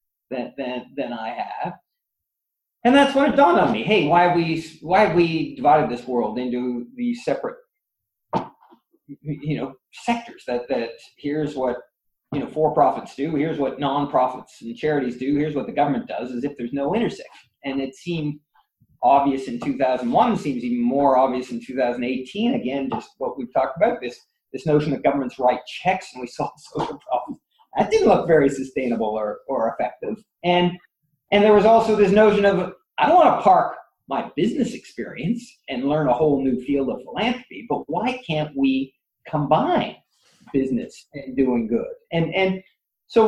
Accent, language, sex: American, English, male